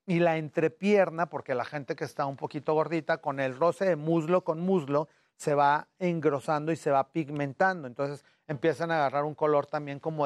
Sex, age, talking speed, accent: male, 40-59, 195 wpm, Mexican